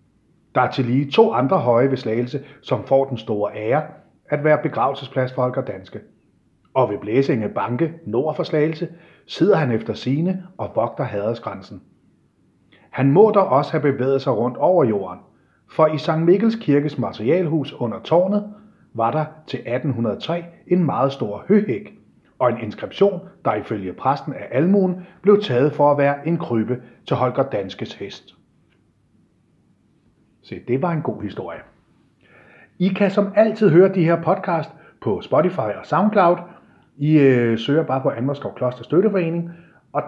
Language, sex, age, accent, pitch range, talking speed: English, male, 30-49, Danish, 120-170 Hz, 155 wpm